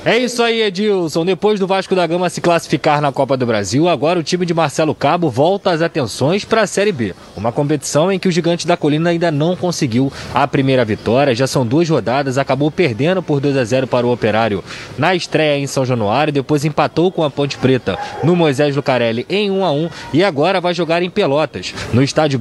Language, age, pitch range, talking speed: Portuguese, 20-39, 135-180 Hz, 210 wpm